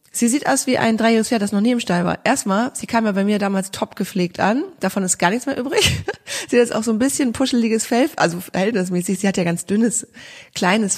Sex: female